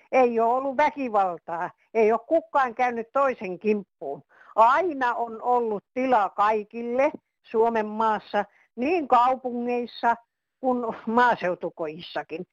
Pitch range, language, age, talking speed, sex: 200-260 Hz, Finnish, 60-79, 100 wpm, female